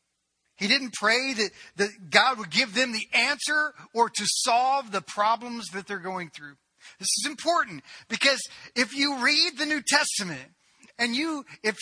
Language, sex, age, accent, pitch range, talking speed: English, male, 40-59, American, 170-265 Hz, 170 wpm